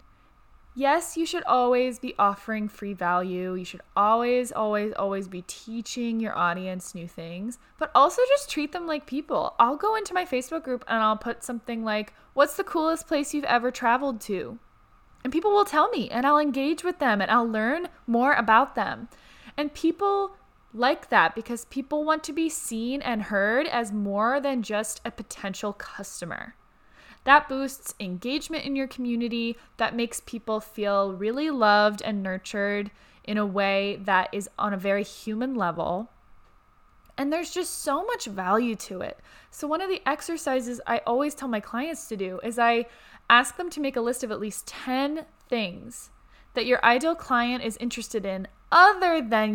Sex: female